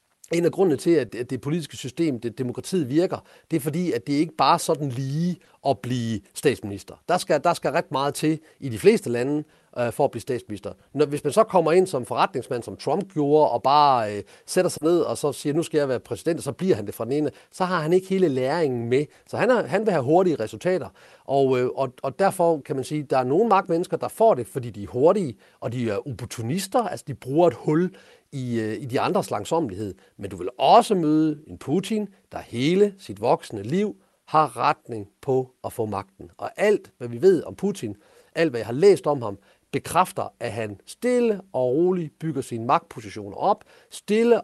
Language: Danish